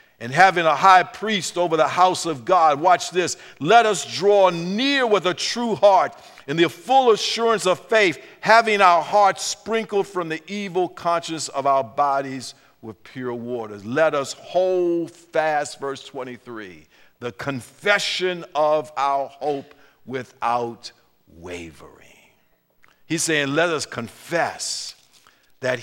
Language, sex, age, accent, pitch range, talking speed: English, male, 50-69, American, 140-205 Hz, 135 wpm